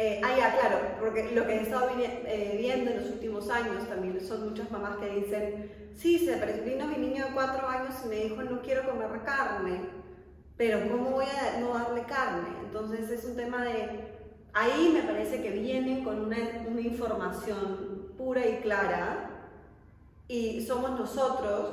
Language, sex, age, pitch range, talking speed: Spanish, female, 30-49, 200-235 Hz, 170 wpm